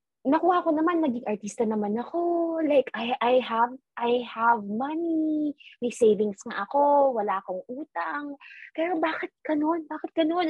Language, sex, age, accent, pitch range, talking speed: Filipino, female, 20-39, native, 205-280 Hz, 150 wpm